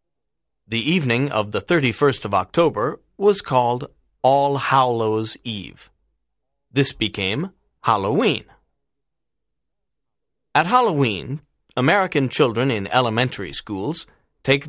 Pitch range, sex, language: 115-150 Hz, male, Chinese